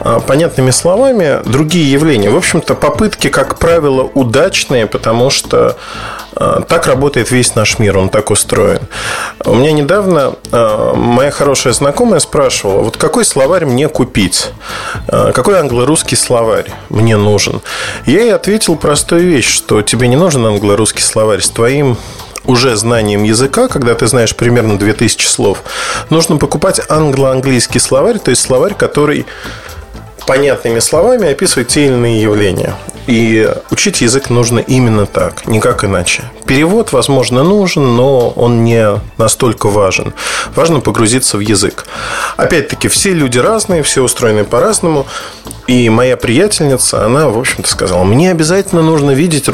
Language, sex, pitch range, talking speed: Russian, male, 110-155 Hz, 135 wpm